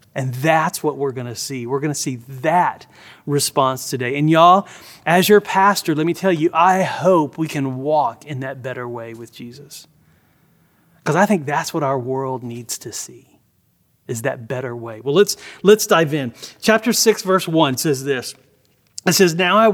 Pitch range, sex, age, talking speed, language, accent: 140-185 Hz, male, 30-49, 190 wpm, English, American